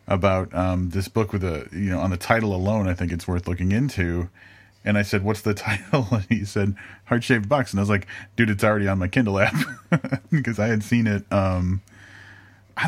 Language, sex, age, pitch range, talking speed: English, male, 30-49, 90-105 Hz, 225 wpm